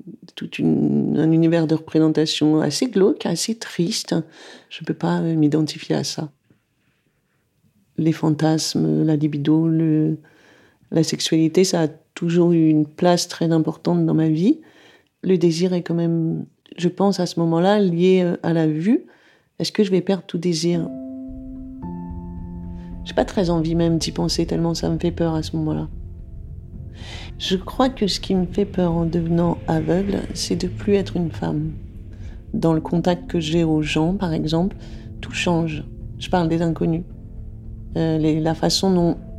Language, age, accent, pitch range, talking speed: French, 40-59, French, 150-175 Hz, 165 wpm